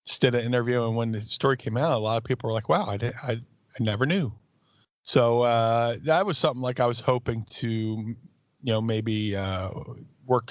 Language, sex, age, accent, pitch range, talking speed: English, male, 40-59, American, 105-125 Hz, 205 wpm